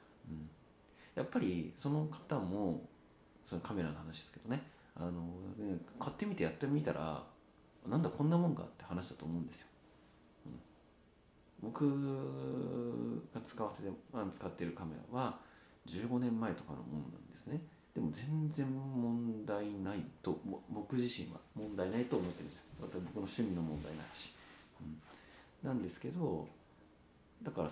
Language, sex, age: Japanese, male, 40-59